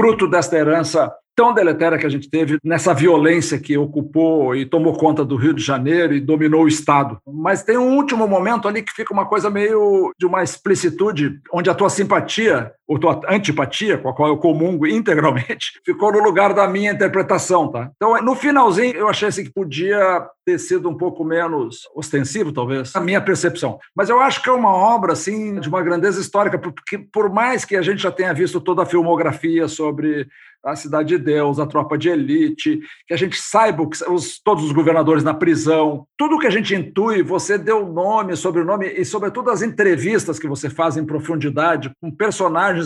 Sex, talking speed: male, 195 wpm